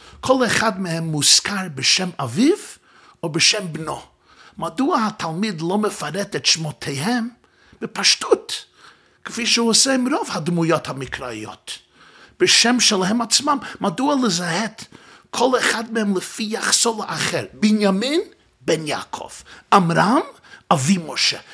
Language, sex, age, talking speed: Hebrew, male, 50-69, 110 wpm